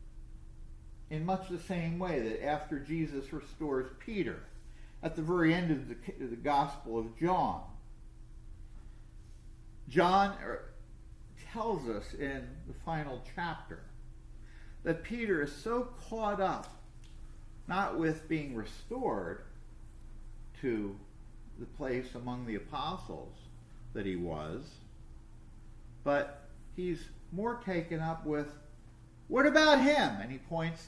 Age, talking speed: 50-69, 110 wpm